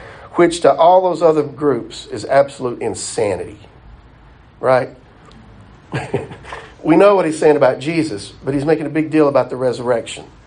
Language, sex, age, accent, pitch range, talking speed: English, male, 50-69, American, 135-185 Hz, 150 wpm